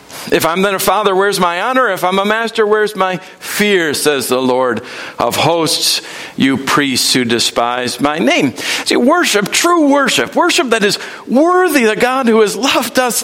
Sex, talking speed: male, 180 wpm